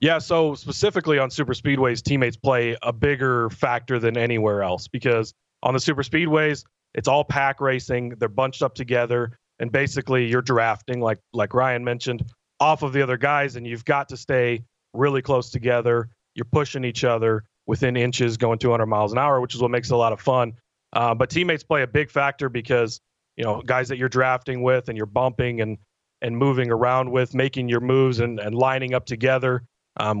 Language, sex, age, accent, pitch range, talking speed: English, male, 30-49, American, 115-135 Hz, 200 wpm